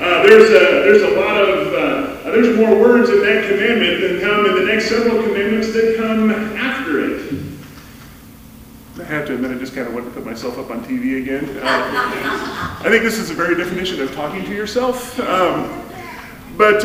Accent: American